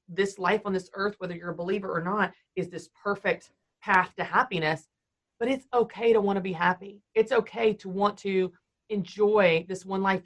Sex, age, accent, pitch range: female, 30-49, American, 180-220 Hz